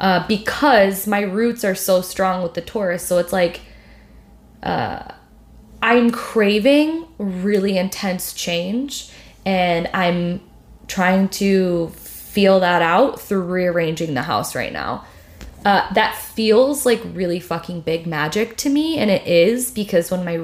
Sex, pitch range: female, 170-205 Hz